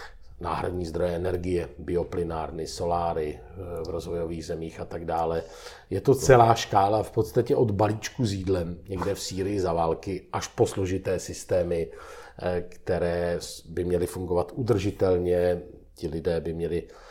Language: Czech